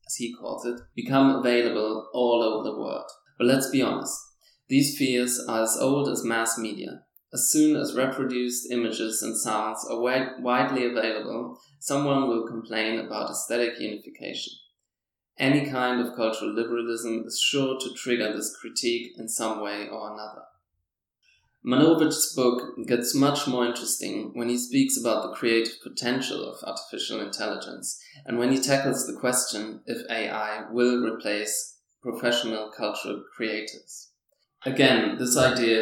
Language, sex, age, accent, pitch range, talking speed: English, male, 20-39, German, 115-130 Hz, 140 wpm